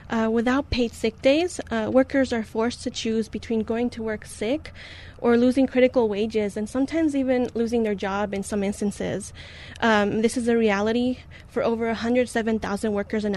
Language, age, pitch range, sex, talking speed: English, 10-29, 210-240 Hz, female, 175 wpm